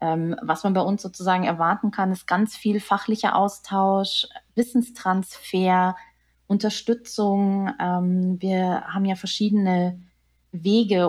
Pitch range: 165-200 Hz